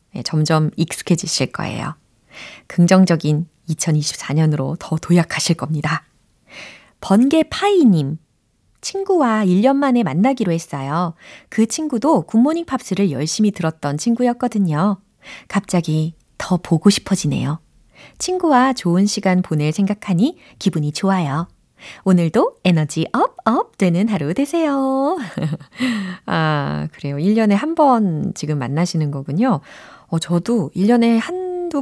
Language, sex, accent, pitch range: Korean, female, native, 160-230 Hz